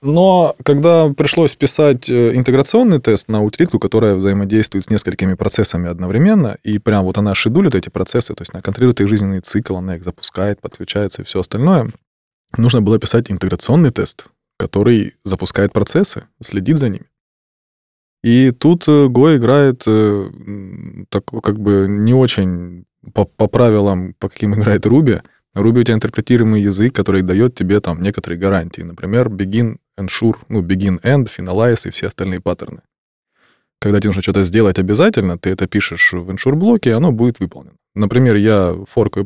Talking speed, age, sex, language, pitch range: 155 wpm, 20-39, male, Russian, 95-125 Hz